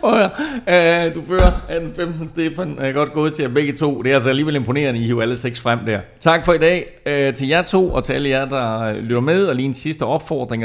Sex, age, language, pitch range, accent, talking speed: male, 30-49, Danish, 105-140 Hz, native, 240 wpm